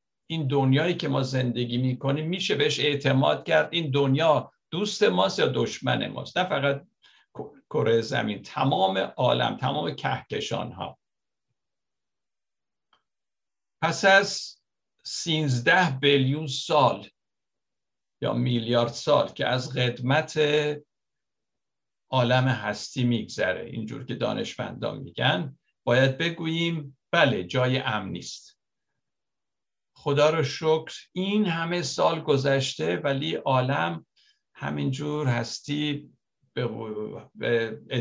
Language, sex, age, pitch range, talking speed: Persian, male, 60-79, 120-150 Hz, 100 wpm